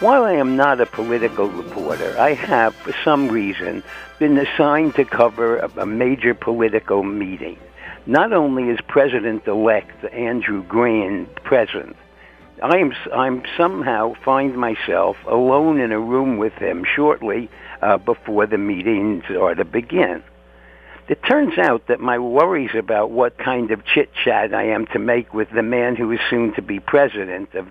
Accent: American